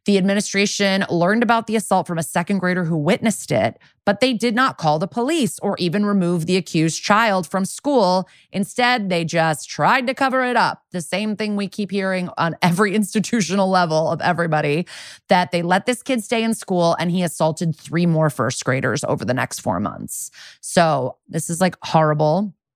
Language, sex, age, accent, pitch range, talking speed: English, female, 20-39, American, 170-210 Hz, 195 wpm